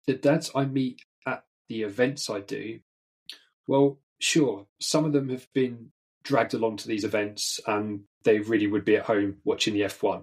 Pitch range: 105-135 Hz